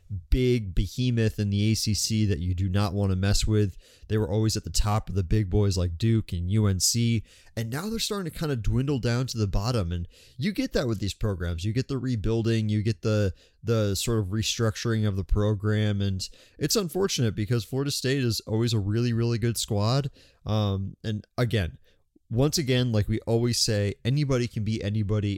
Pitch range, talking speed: 100-120 Hz, 205 wpm